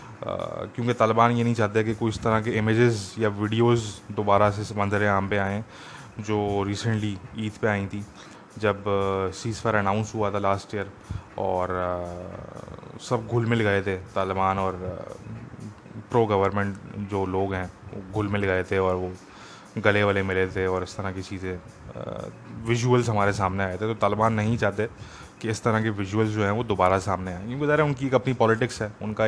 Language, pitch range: English, 100-115 Hz